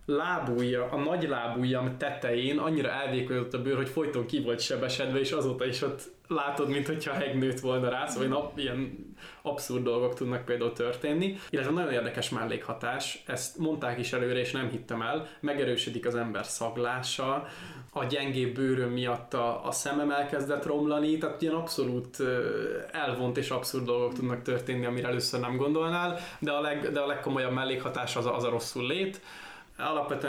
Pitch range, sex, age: 125-150 Hz, male, 20-39